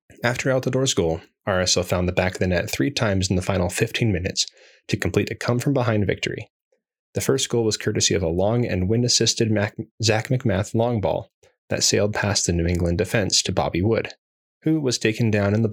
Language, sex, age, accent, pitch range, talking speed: English, male, 20-39, American, 95-120 Hz, 200 wpm